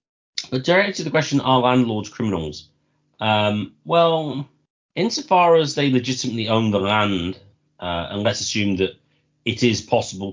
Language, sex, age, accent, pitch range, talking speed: English, male, 30-49, British, 85-125 Hz, 145 wpm